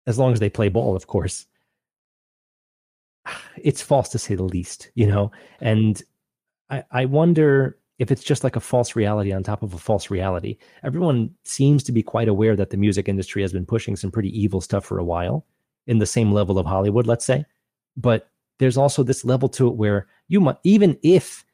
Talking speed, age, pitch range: 205 wpm, 30-49, 105-135 Hz